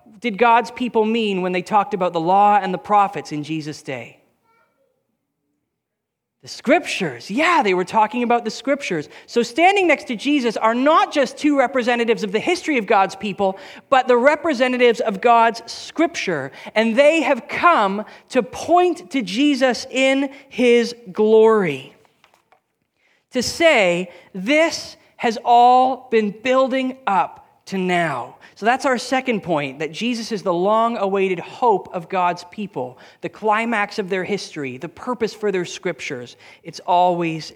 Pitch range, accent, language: 180-255 Hz, American, English